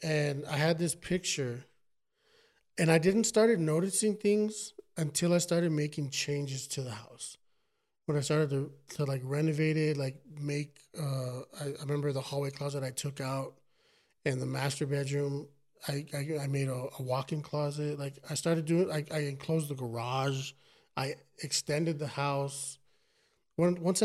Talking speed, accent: 165 wpm, American